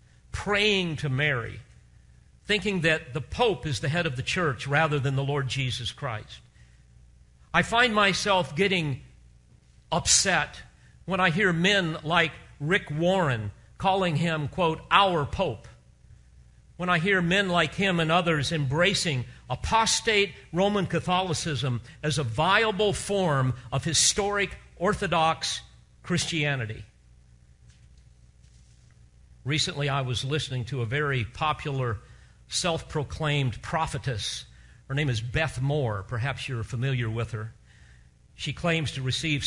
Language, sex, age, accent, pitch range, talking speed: English, male, 50-69, American, 110-160 Hz, 120 wpm